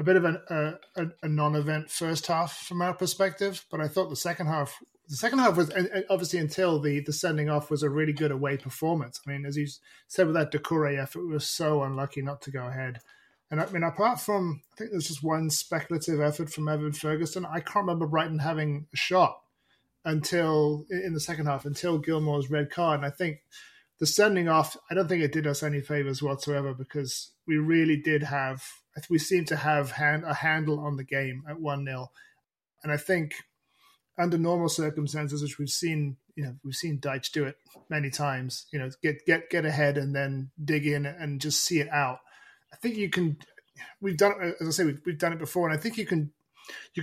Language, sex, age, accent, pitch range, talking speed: English, male, 30-49, British, 145-170 Hz, 215 wpm